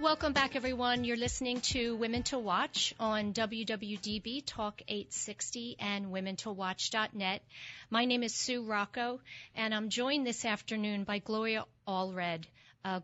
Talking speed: 135 wpm